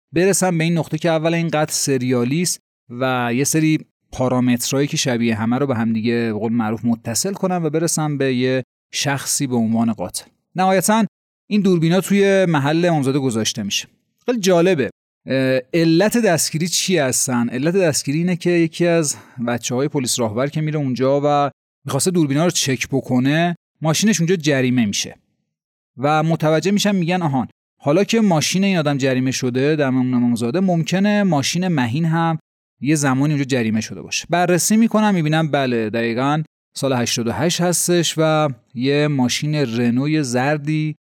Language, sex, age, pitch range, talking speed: Persian, male, 30-49, 130-175 Hz, 155 wpm